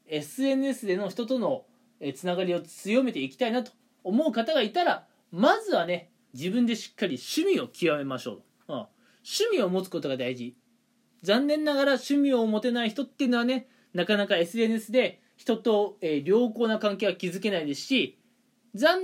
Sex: male